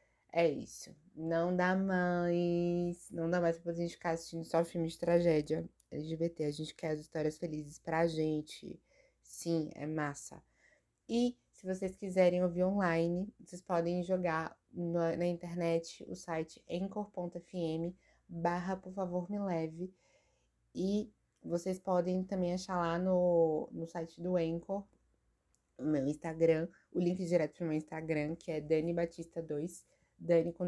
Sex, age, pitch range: female, 20-39, 165-185 Hz